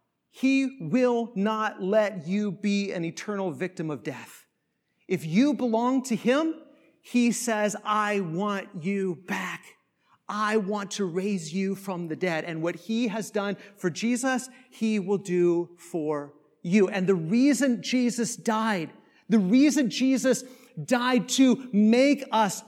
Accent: American